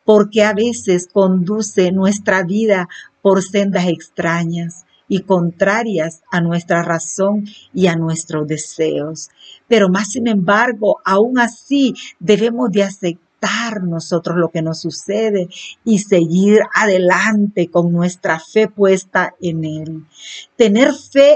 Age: 50-69